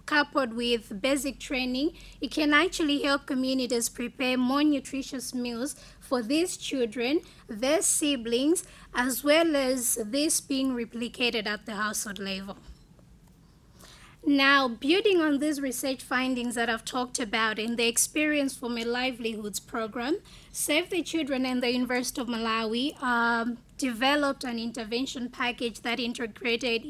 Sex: female